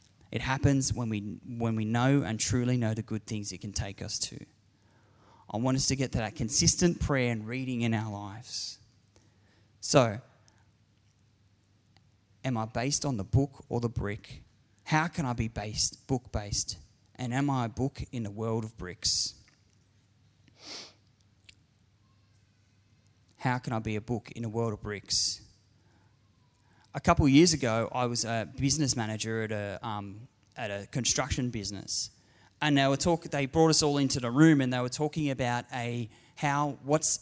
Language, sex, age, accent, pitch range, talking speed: English, male, 20-39, Australian, 105-130 Hz, 170 wpm